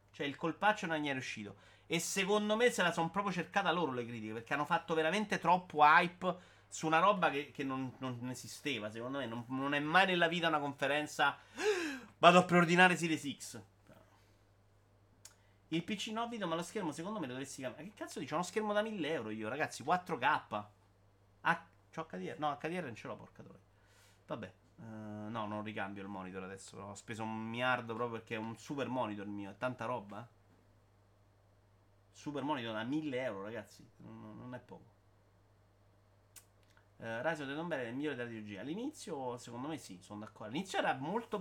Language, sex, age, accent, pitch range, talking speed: Italian, male, 30-49, native, 100-165 Hz, 195 wpm